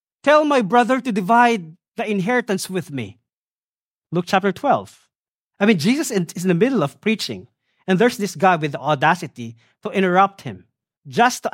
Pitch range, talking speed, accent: 155-215 Hz, 170 wpm, Filipino